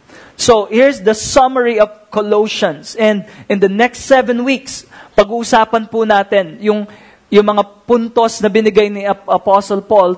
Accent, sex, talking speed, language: Filipino, male, 135 wpm, English